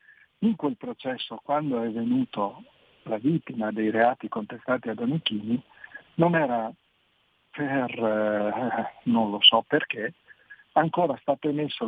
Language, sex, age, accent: Italian, male, 50-69, native